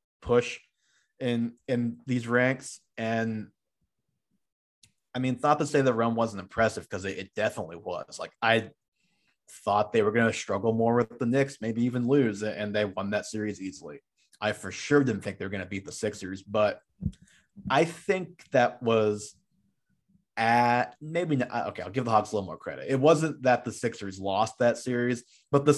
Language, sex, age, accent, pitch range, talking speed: English, male, 30-49, American, 105-130 Hz, 185 wpm